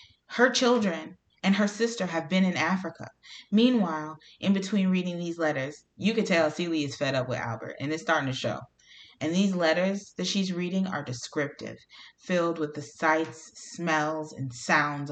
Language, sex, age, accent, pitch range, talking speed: English, female, 30-49, American, 150-195 Hz, 175 wpm